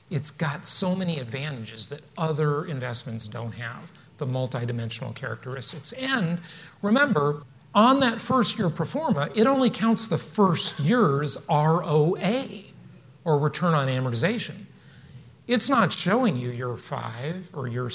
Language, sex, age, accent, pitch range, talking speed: English, male, 40-59, American, 135-190 Hz, 130 wpm